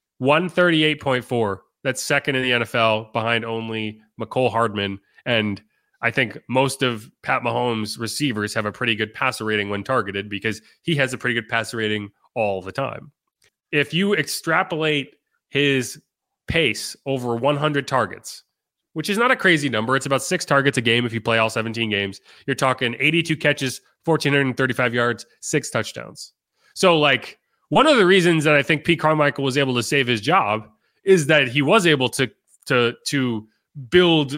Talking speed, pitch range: 170 wpm, 115-145 Hz